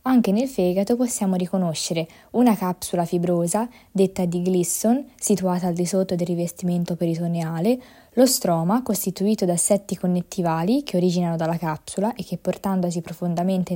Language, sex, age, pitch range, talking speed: Italian, female, 20-39, 175-230 Hz, 140 wpm